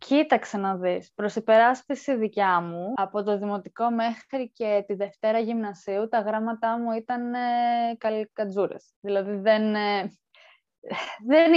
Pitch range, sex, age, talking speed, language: 210-285 Hz, female, 20-39, 120 wpm, Greek